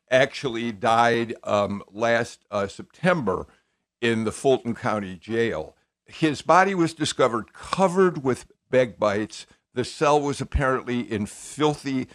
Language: English